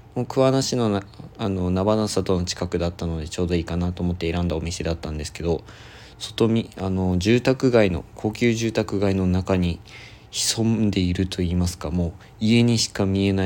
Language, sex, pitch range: Japanese, male, 90-110 Hz